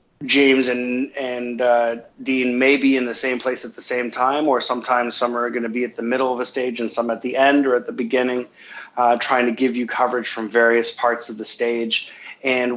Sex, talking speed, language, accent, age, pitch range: male, 235 wpm, English, American, 30-49, 120-130 Hz